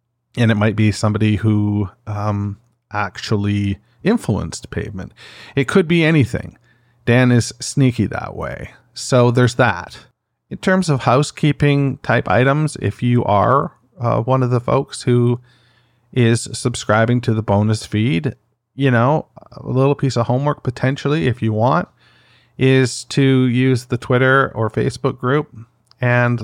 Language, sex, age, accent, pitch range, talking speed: English, male, 40-59, American, 105-125 Hz, 145 wpm